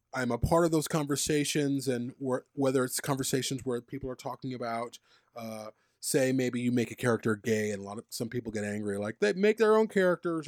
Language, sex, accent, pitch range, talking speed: English, male, American, 125-170 Hz, 210 wpm